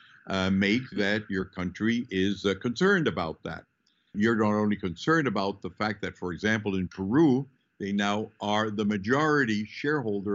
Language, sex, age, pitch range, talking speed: English, male, 60-79, 100-130 Hz, 160 wpm